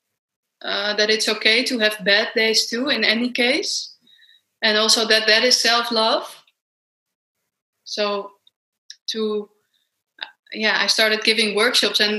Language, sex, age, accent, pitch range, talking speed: English, female, 20-39, Dutch, 210-250 Hz, 135 wpm